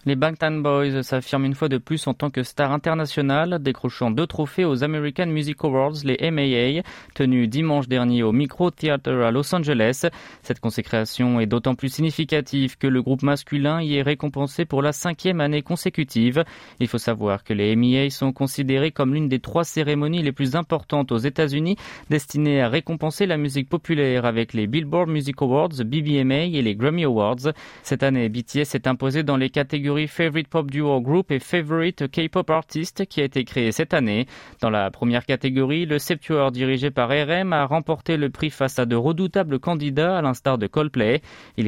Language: French